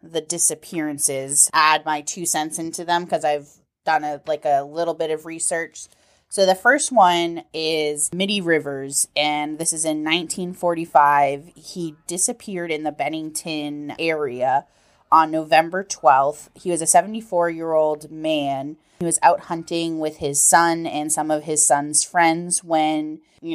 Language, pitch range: English, 145-165 Hz